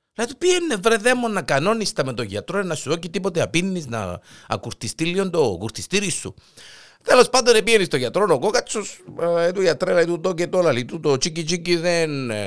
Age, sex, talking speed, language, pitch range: 50-69, male, 190 wpm, Greek, 120-180 Hz